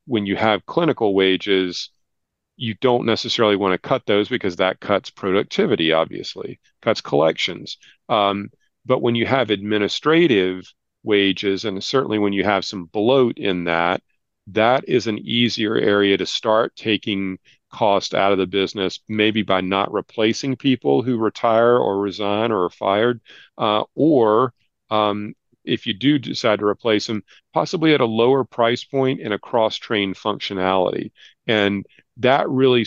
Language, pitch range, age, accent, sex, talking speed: English, 95-115 Hz, 40-59, American, male, 150 wpm